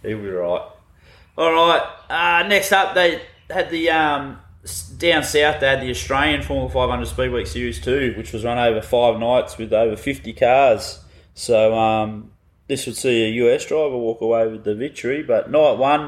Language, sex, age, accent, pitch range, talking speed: English, male, 20-39, Australian, 110-150 Hz, 180 wpm